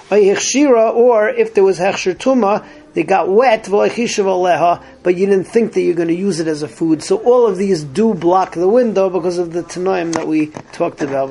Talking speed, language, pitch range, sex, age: 195 wpm, English, 175-220 Hz, male, 40-59